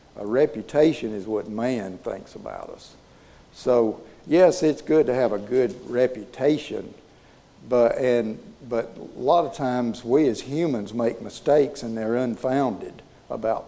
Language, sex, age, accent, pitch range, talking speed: English, male, 60-79, American, 115-135 Hz, 145 wpm